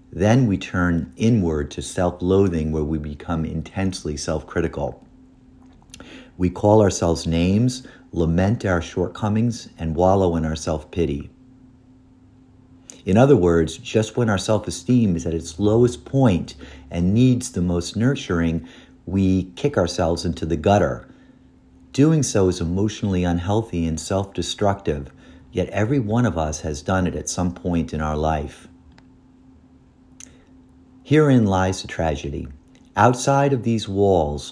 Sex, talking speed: male, 130 wpm